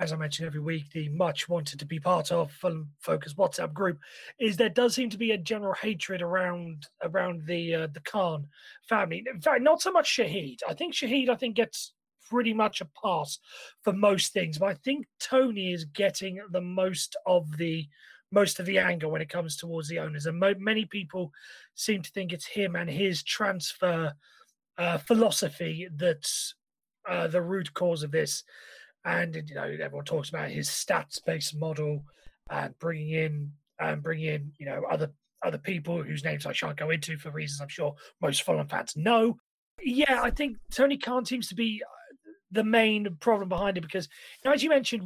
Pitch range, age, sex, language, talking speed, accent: 160-230 Hz, 30-49, male, English, 190 wpm, British